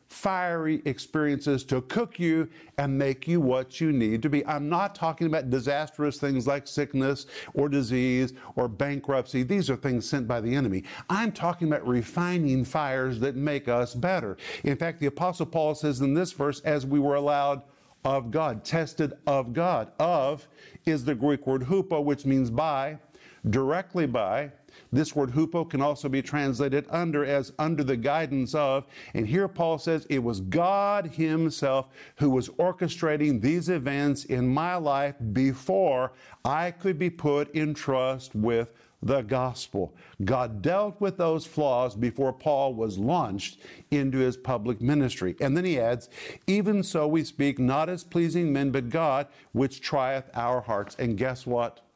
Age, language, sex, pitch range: 50-69, English, male, 130-160 Hz